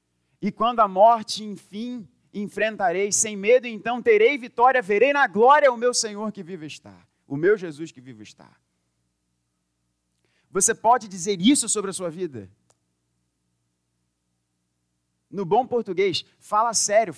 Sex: male